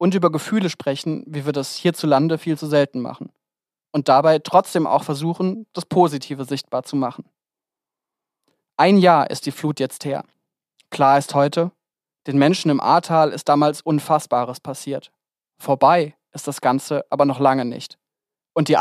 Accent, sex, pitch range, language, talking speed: German, male, 140-170 Hz, German, 160 wpm